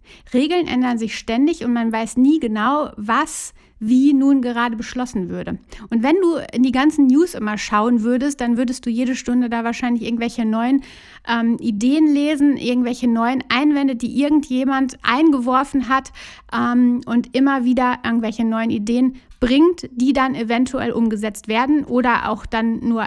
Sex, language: female, German